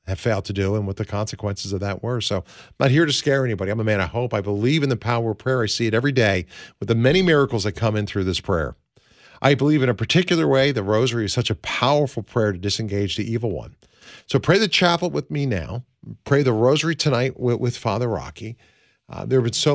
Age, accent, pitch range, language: 50-69, American, 95-130 Hz, English